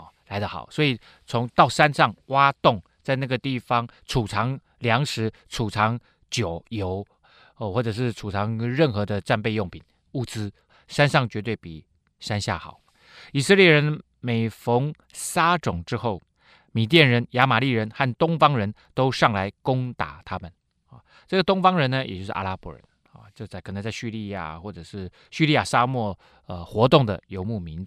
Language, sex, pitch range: Chinese, male, 95-130 Hz